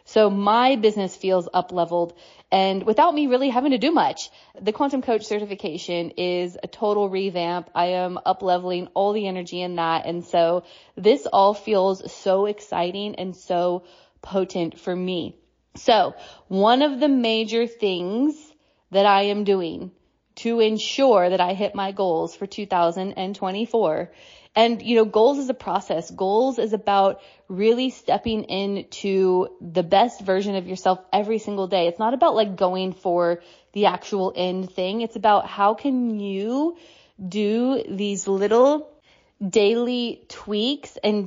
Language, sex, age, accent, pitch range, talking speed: English, female, 20-39, American, 185-225 Hz, 150 wpm